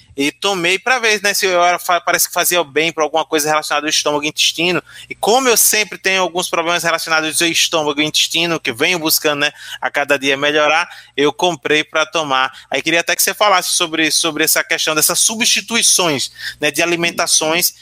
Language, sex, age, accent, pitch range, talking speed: Portuguese, male, 20-39, Brazilian, 155-185 Hz, 200 wpm